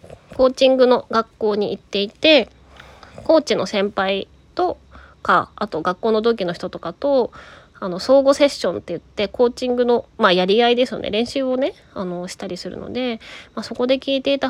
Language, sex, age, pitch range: Japanese, female, 20-39, 185-270 Hz